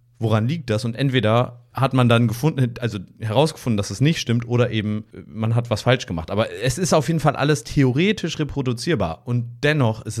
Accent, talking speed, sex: German, 200 wpm, male